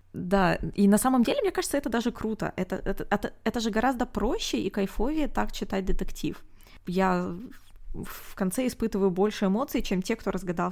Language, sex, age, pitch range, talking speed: Russian, female, 20-39, 180-230 Hz, 180 wpm